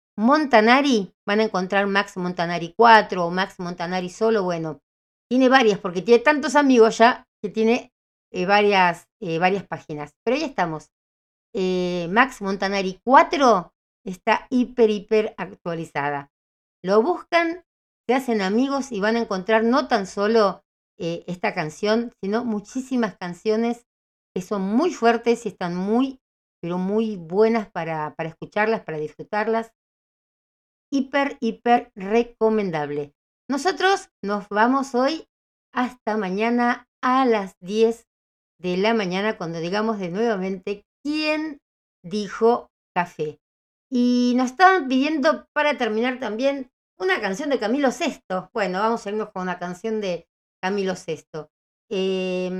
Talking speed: 130 wpm